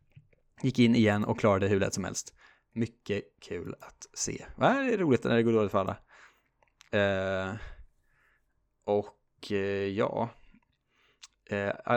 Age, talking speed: 20-39, 130 wpm